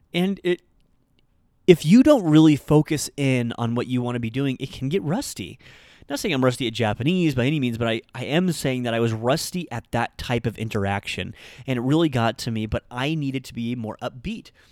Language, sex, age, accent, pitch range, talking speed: English, male, 30-49, American, 115-155 Hz, 220 wpm